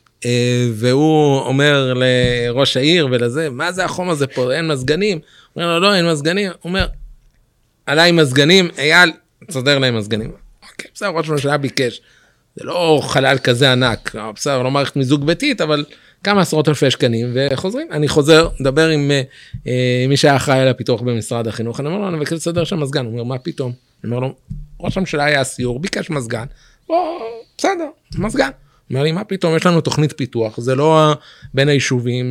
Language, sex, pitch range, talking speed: Hebrew, male, 130-175 Hz, 180 wpm